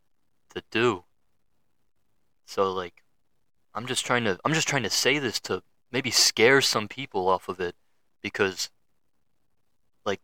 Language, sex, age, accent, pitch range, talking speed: English, male, 20-39, American, 95-120 Hz, 140 wpm